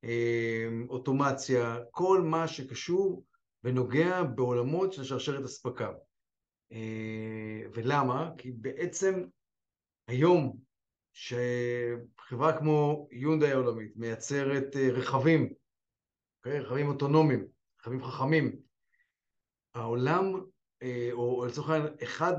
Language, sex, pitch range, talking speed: Hebrew, male, 120-155 Hz, 75 wpm